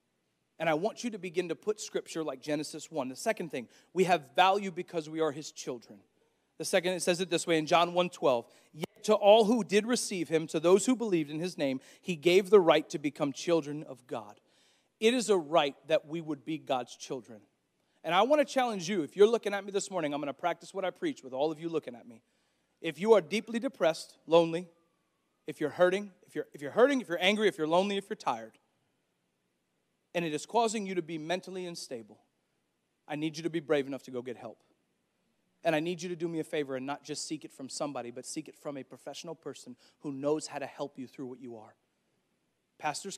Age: 40-59